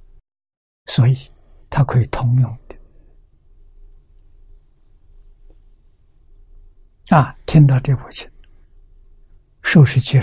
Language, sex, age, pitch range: Chinese, male, 60-79, 80-135 Hz